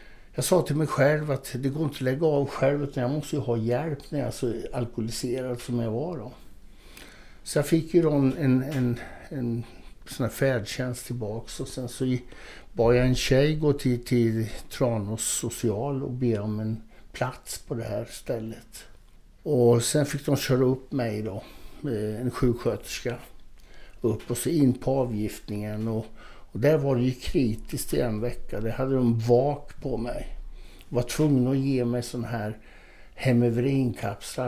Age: 60-79